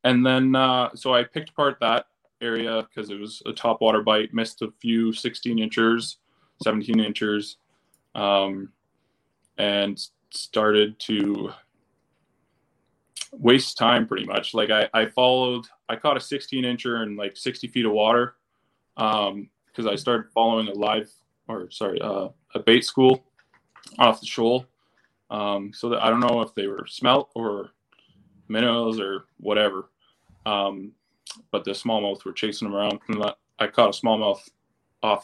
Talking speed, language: 145 wpm, English